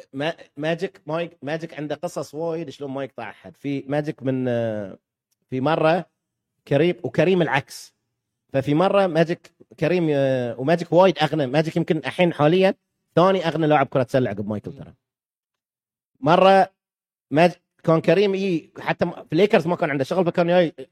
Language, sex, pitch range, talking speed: Arabic, male, 140-195 Hz, 155 wpm